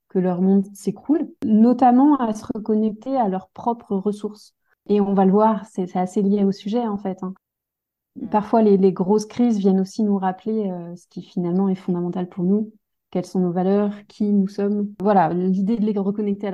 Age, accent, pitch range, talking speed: 30-49, French, 180-215 Hz, 205 wpm